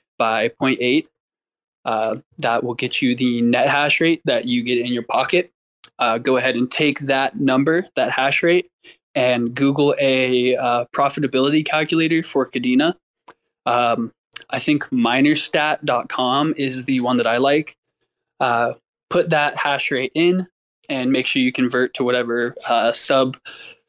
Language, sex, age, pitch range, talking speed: English, male, 20-39, 125-150 Hz, 150 wpm